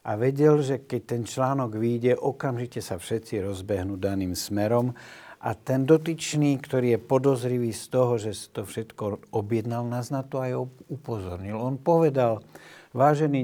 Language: Slovak